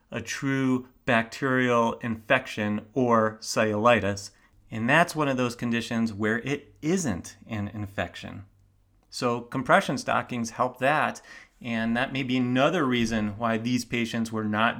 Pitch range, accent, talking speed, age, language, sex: 105-125 Hz, American, 135 wpm, 30-49, English, male